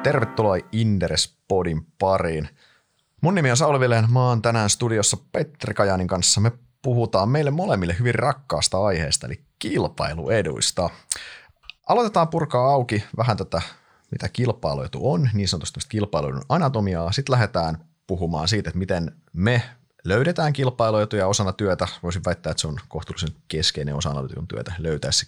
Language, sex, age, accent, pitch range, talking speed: Finnish, male, 30-49, native, 85-120 Hz, 135 wpm